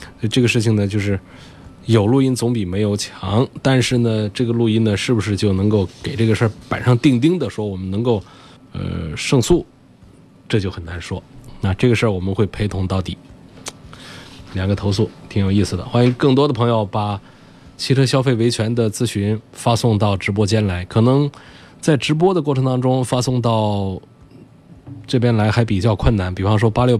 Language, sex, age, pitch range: Chinese, male, 20-39, 95-120 Hz